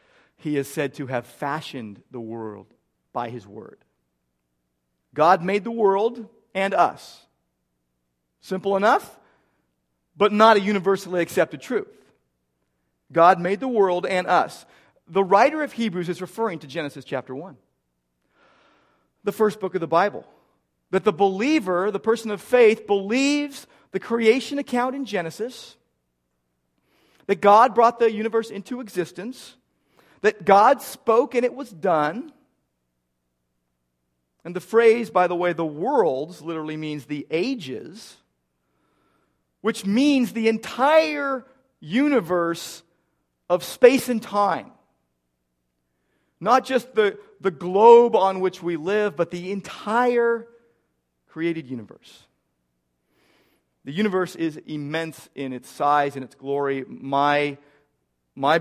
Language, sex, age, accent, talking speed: English, male, 40-59, American, 125 wpm